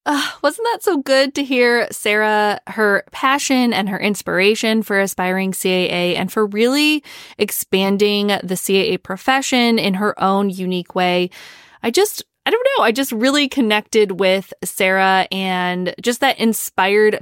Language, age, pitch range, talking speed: English, 20-39, 185-240 Hz, 145 wpm